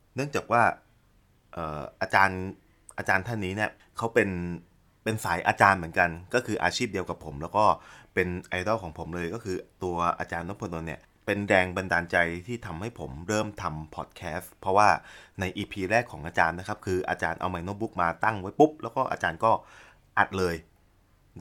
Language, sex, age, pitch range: Thai, male, 20-39, 90-110 Hz